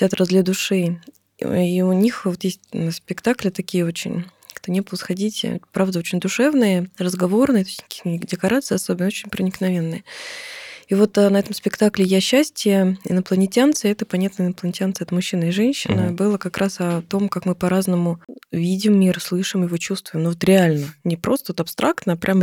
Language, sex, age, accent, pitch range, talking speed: Russian, female, 20-39, native, 170-205 Hz, 165 wpm